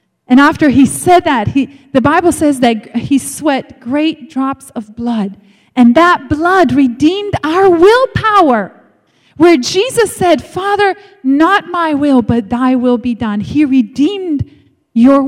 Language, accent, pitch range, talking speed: English, American, 245-360 Hz, 145 wpm